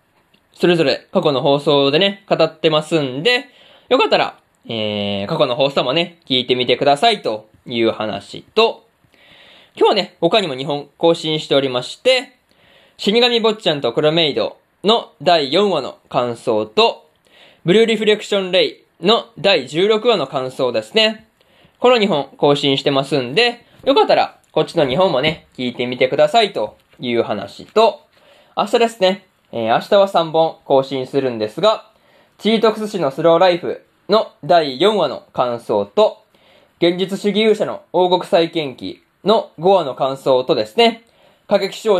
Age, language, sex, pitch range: 20-39, Japanese, male, 140-210 Hz